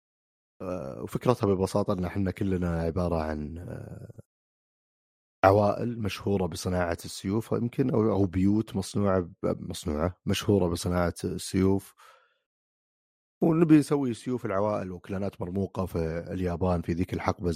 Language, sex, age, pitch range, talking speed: Arabic, male, 30-49, 90-110 Hz, 105 wpm